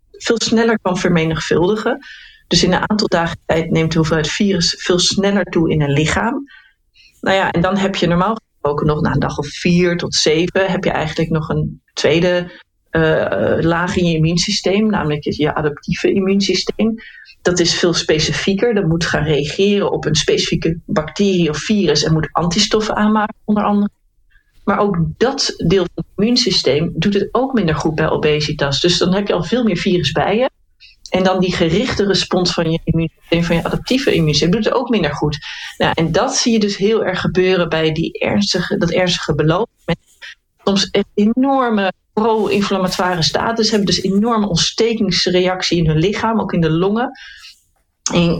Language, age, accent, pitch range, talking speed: Dutch, 40-59, Dutch, 165-205 Hz, 185 wpm